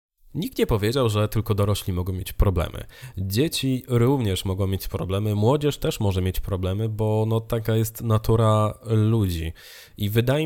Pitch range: 95-120 Hz